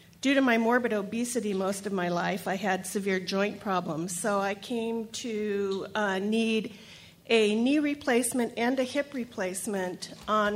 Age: 40-59